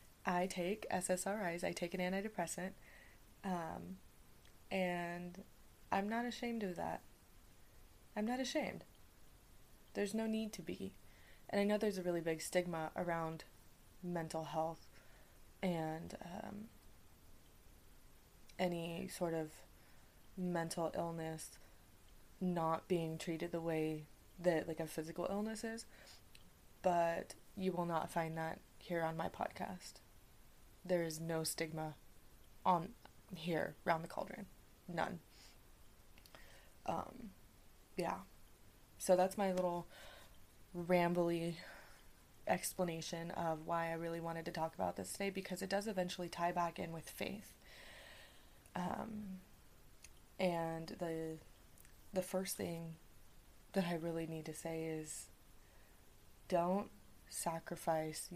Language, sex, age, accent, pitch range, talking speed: English, female, 20-39, American, 155-185 Hz, 115 wpm